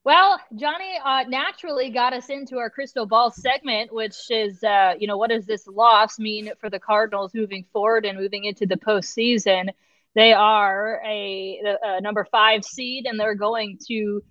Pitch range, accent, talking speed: 195-230 Hz, American, 175 wpm